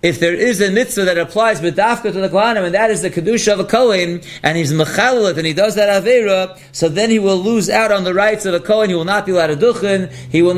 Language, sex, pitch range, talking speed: English, male, 175-215 Hz, 265 wpm